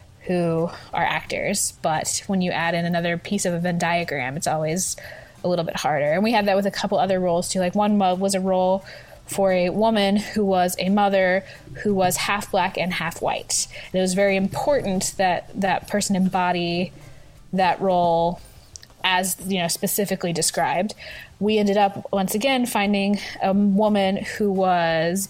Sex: female